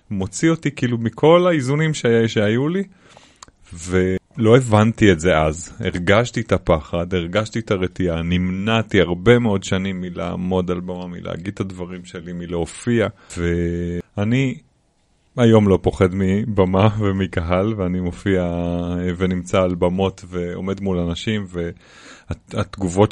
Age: 30-49